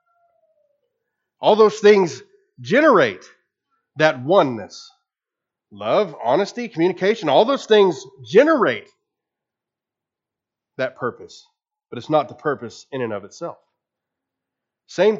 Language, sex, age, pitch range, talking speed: English, male, 40-59, 150-235 Hz, 100 wpm